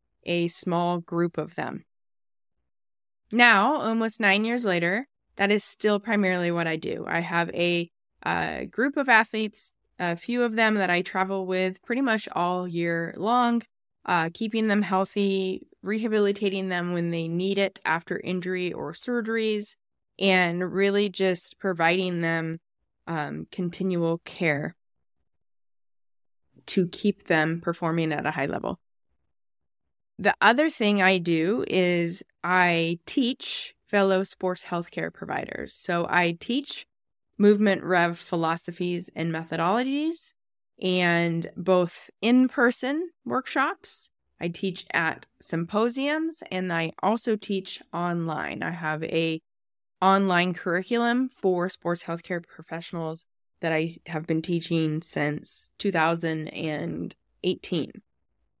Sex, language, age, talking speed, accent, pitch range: female, English, 20-39, 120 wpm, American, 170-210 Hz